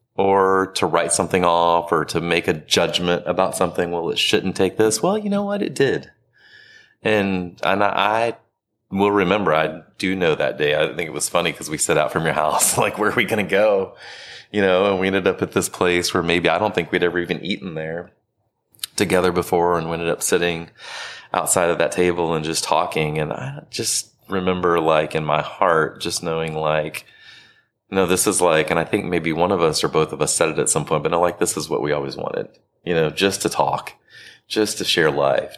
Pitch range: 85-105 Hz